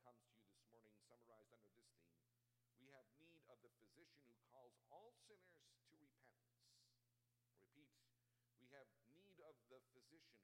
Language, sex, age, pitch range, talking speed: English, male, 50-69, 120-190 Hz, 160 wpm